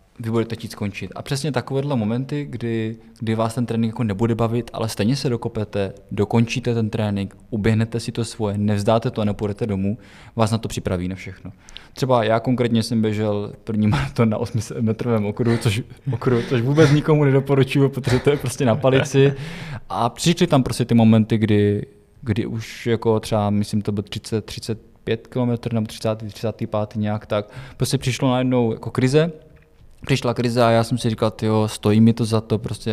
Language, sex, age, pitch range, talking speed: Czech, male, 20-39, 105-120 Hz, 185 wpm